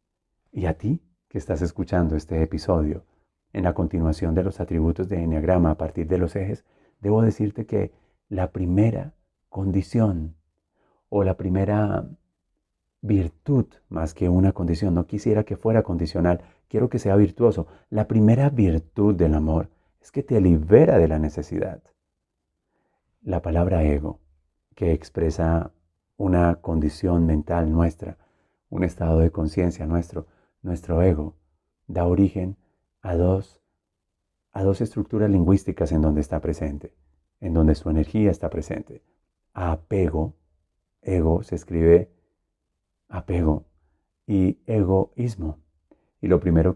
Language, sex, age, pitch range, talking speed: Spanish, male, 40-59, 80-95 Hz, 125 wpm